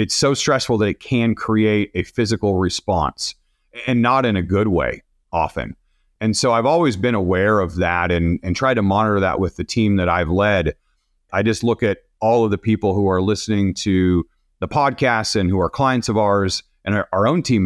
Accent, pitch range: American, 95-120 Hz